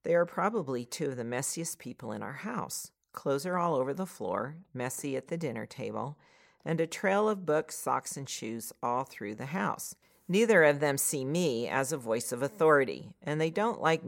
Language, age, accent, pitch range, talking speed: English, 50-69, American, 125-175 Hz, 205 wpm